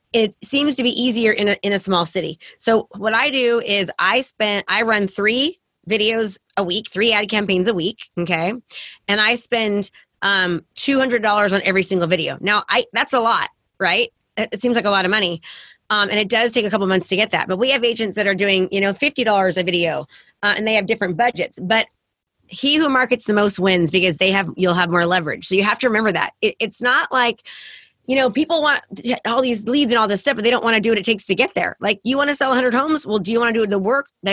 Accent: American